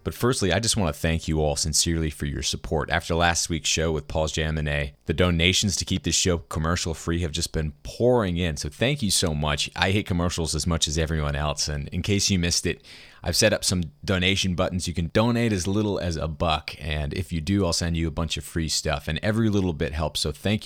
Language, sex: English, male